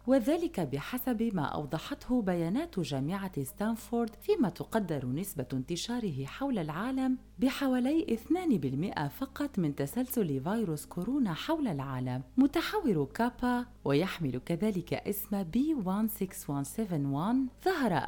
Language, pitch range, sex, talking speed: Arabic, 150-245 Hz, female, 95 wpm